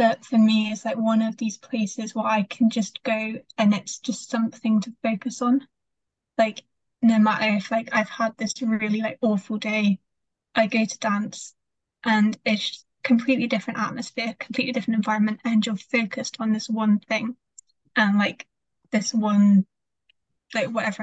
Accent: British